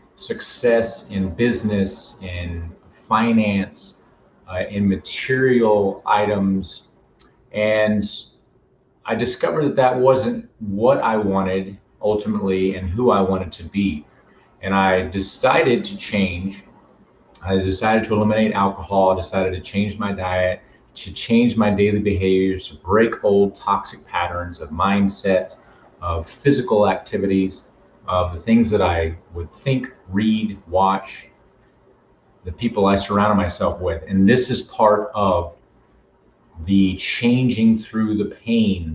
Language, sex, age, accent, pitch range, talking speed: English, male, 30-49, American, 90-105 Hz, 125 wpm